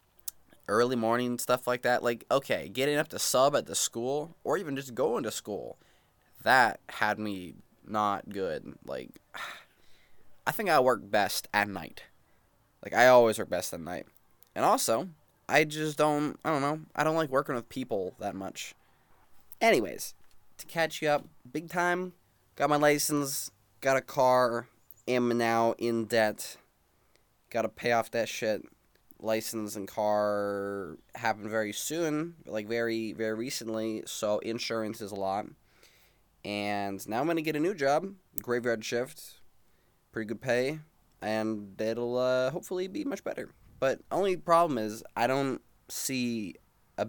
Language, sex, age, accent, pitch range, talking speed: English, male, 20-39, American, 105-140 Hz, 155 wpm